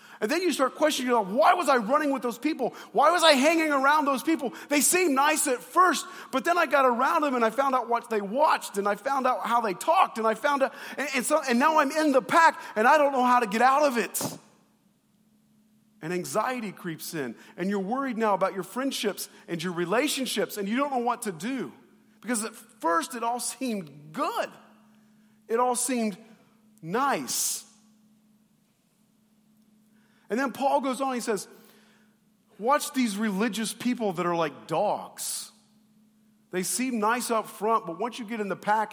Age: 40-59